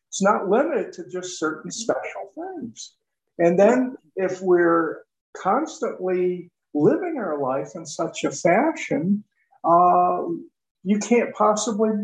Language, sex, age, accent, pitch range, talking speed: English, male, 50-69, American, 170-240 Hz, 120 wpm